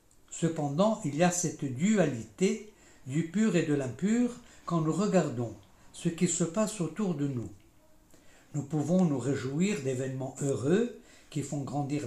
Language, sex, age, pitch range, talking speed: French, male, 60-79, 145-190 Hz, 150 wpm